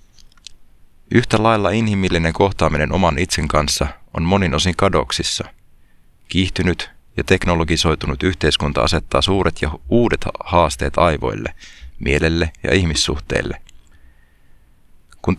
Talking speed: 100 wpm